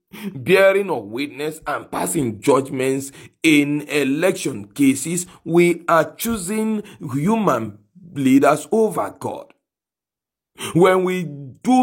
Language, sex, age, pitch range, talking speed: English, male, 40-59, 140-185 Hz, 95 wpm